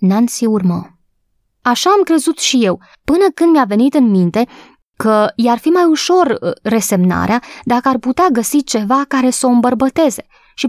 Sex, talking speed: female, 170 wpm